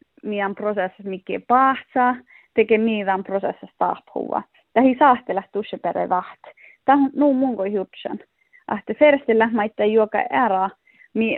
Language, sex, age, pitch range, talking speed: Finnish, female, 30-49, 200-270 Hz, 120 wpm